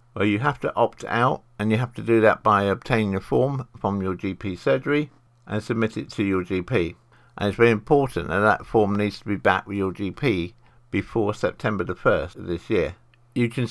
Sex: male